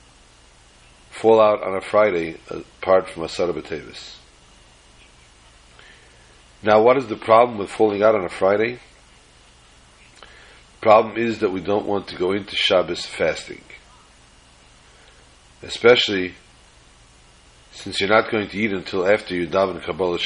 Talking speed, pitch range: 130 wpm, 65-100 Hz